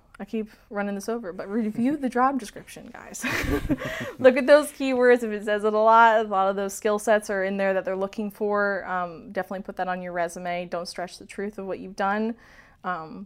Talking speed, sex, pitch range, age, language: 225 wpm, female, 185-220 Hz, 20-39, English